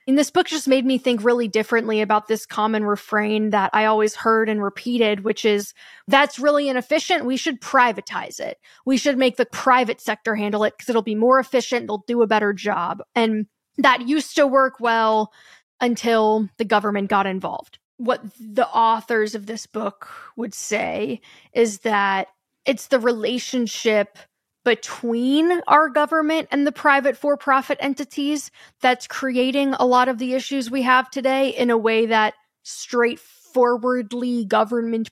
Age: 10-29